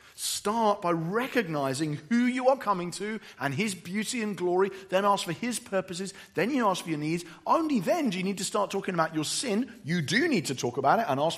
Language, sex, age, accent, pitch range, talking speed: English, male, 40-59, British, 135-200 Hz, 230 wpm